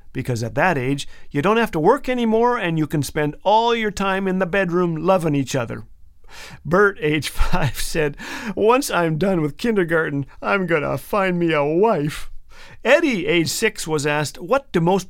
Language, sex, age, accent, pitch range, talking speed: English, male, 50-69, American, 140-215 Hz, 185 wpm